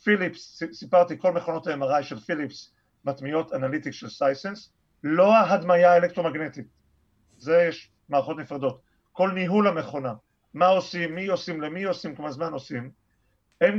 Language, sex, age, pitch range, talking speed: Hebrew, male, 40-59, 130-180 Hz, 135 wpm